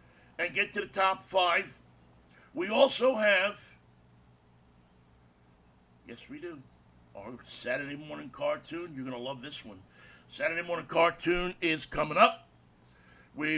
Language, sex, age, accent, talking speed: English, male, 60-79, American, 130 wpm